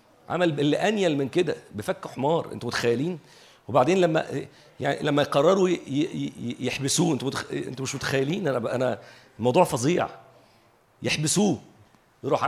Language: Arabic